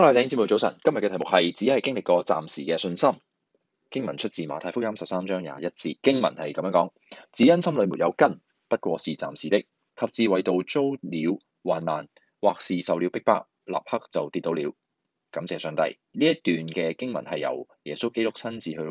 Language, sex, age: Chinese, male, 20-39